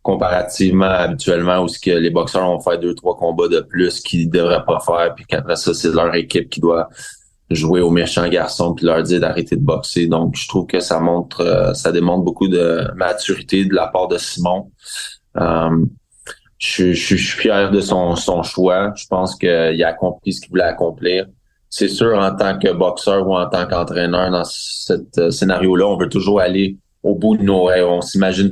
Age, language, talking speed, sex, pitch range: 20-39, French, 205 wpm, male, 85-100 Hz